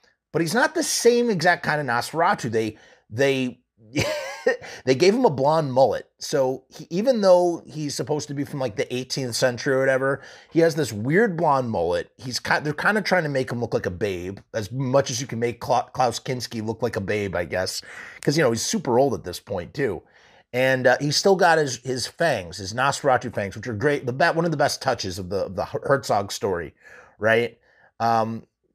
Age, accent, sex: 30-49, American, male